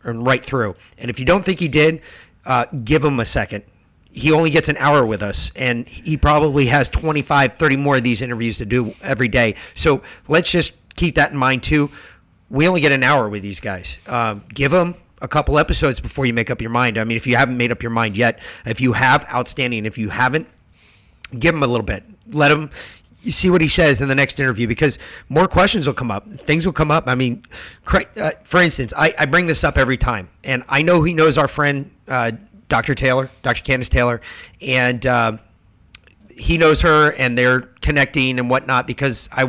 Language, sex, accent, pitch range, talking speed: English, male, American, 120-150 Hz, 215 wpm